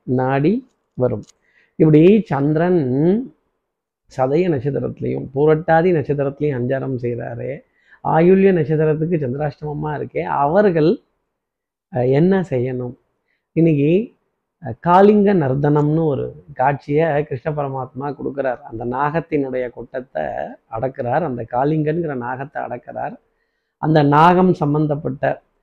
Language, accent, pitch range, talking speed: Tamil, native, 130-165 Hz, 80 wpm